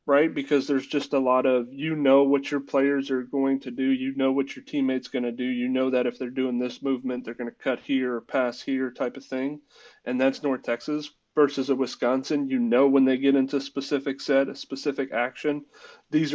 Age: 30-49